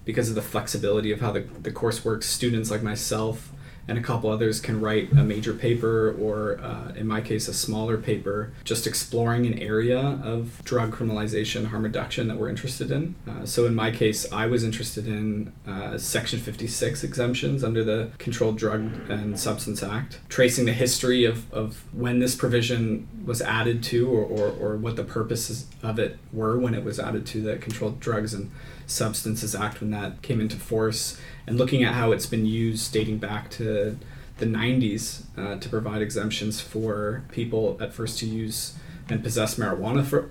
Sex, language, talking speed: male, English, 185 wpm